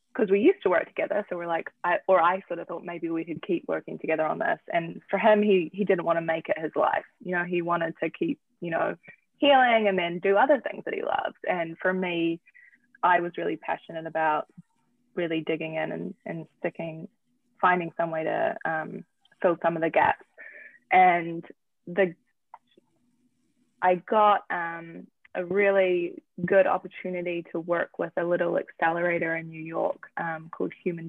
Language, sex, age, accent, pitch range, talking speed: English, female, 20-39, Australian, 165-190 Hz, 185 wpm